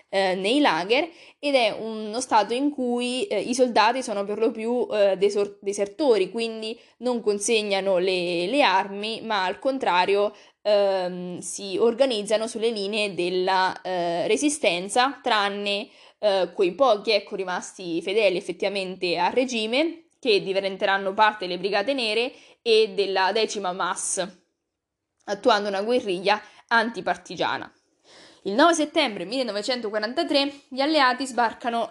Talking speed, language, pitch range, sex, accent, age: 125 wpm, Italian, 195-250 Hz, female, native, 20-39